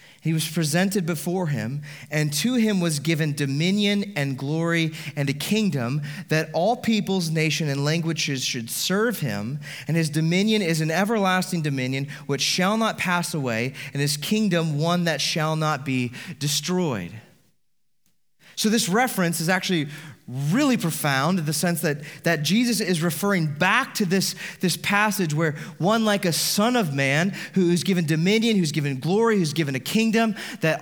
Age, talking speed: 30-49, 165 wpm